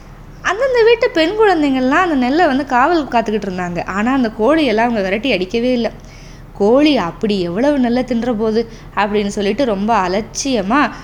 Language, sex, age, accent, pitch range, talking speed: Tamil, female, 20-39, native, 220-305 Hz, 140 wpm